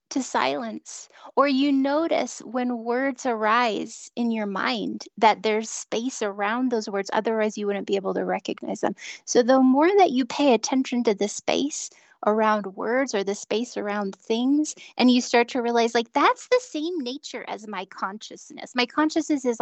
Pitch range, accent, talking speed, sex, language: 215-285 Hz, American, 175 wpm, female, English